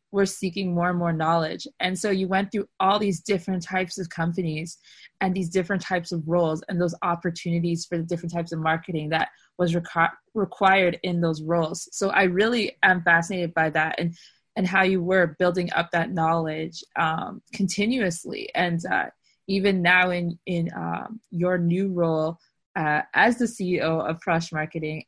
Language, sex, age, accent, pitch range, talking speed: English, female, 20-39, American, 165-190 Hz, 175 wpm